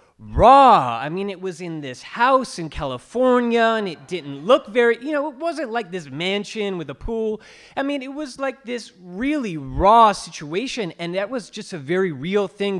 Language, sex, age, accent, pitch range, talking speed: English, male, 30-49, American, 135-200 Hz, 195 wpm